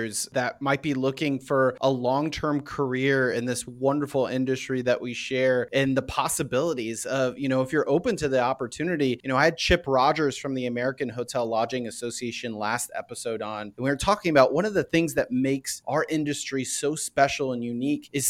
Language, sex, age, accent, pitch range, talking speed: English, male, 30-49, American, 130-150 Hz, 195 wpm